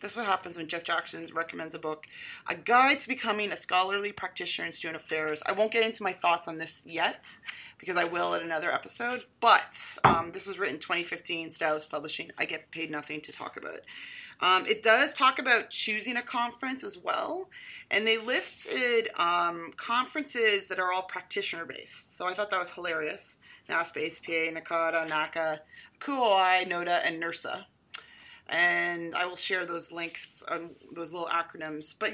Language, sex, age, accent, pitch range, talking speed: English, female, 30-49, American, 170-240 Hz, 180 wpm